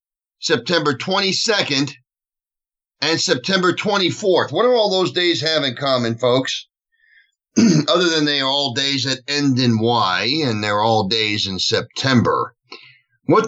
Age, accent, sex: 50-69, American, male